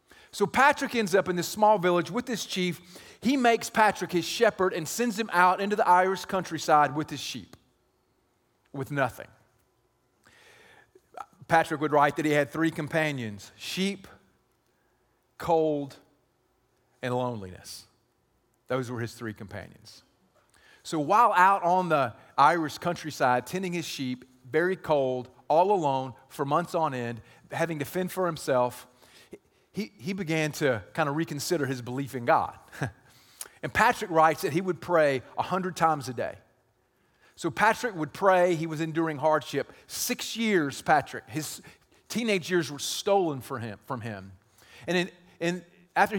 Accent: American